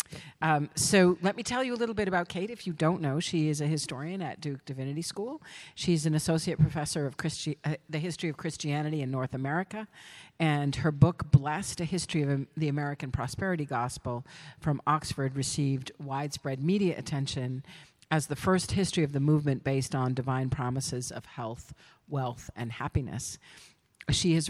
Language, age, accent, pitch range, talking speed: English, 50-69, American, 135-165 Hz, 175 wpm